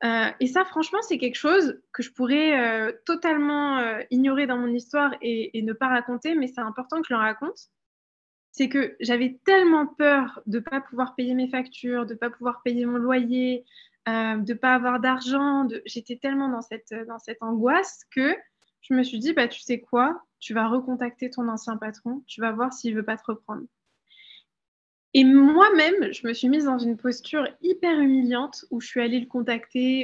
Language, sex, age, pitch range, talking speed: French, female, 20-39, 235-280 Hz, 205 wpm